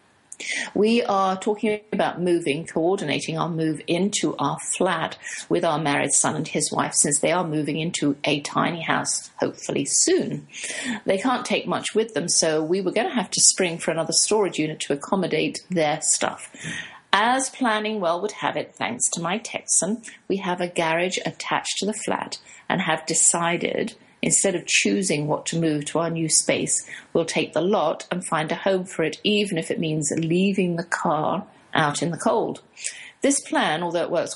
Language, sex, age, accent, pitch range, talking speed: English, female, 50-69, British, 155-195 Hz, 185 wpm